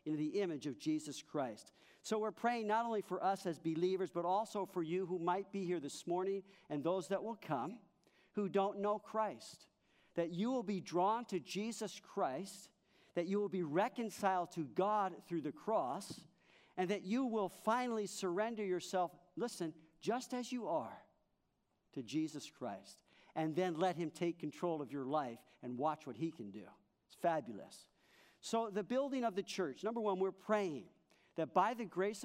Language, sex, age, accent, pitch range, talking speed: English, male, 50-69, American, 160-210 Hz, 180 wpm